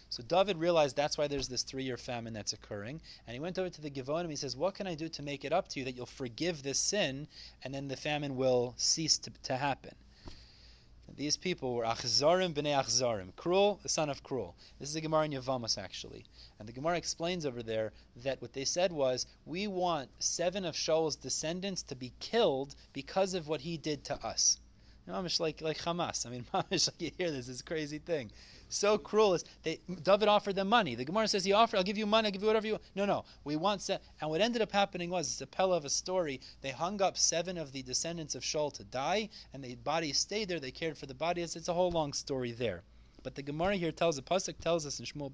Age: 30-49